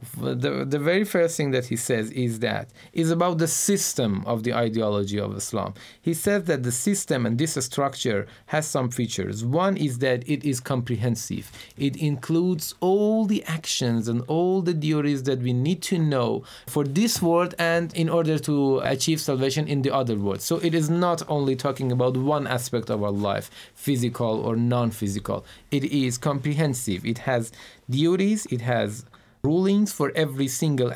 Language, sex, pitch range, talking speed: Persian, male, 115-160 Hz, 175 wpm